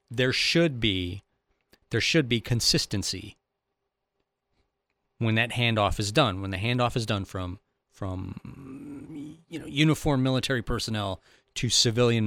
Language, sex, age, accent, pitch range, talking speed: English, male, 30-49, American, 95-125 Hz, 125 wpm